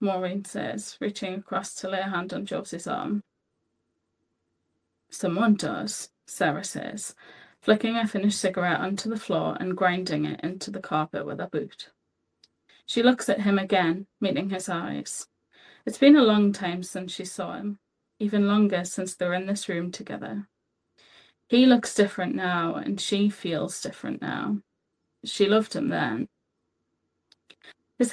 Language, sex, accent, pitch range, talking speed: English, female, British, 185-210 Hz, 150 wpm